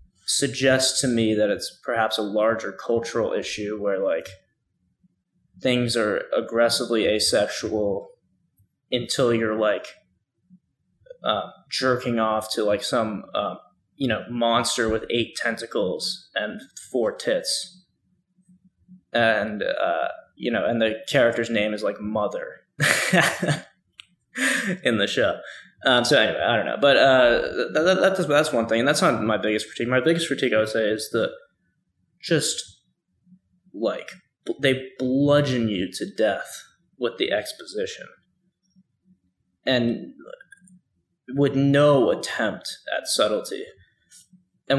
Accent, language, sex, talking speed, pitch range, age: American, English, male, 125 wpm, 110-185 Hz, 20-39